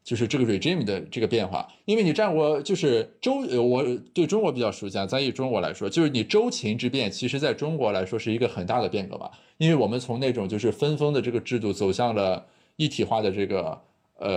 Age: 20-39